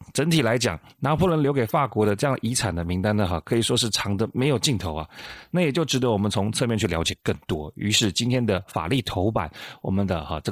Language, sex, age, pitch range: Chinese, male, 30-49, 100-130 Hz